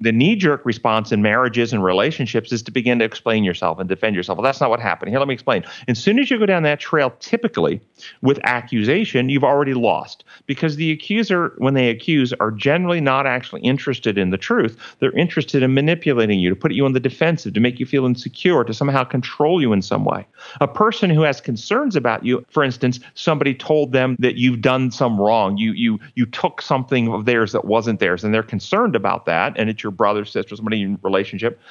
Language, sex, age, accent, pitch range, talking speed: English, male, 40-59, American, 110-145 Hz, 220 wpm